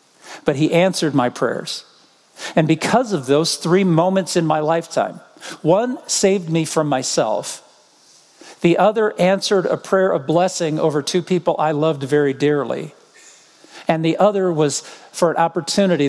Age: 50-69